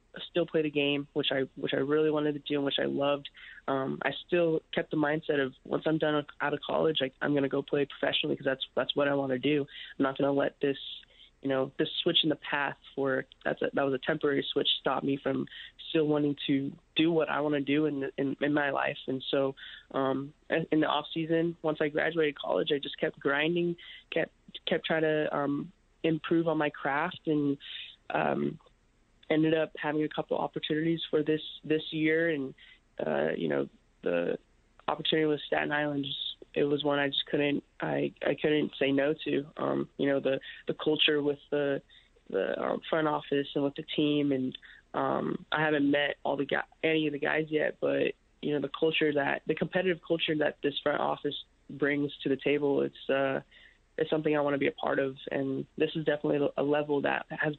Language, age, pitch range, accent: English, 20-39, 140-155 Hz, American